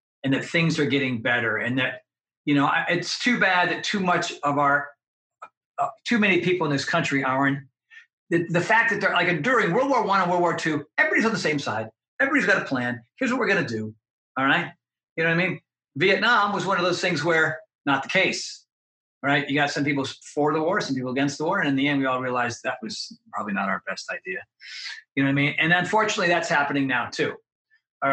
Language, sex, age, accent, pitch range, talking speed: English, male, 40-59, American, 125-165 Hz, 240 wpm